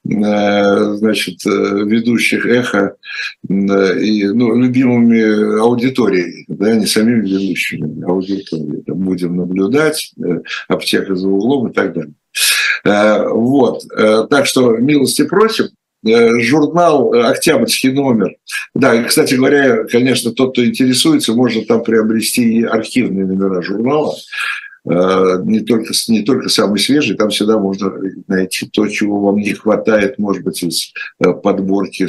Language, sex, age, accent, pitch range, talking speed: Russian, male, 60-79, native, 95-120 Hz, 115 wpm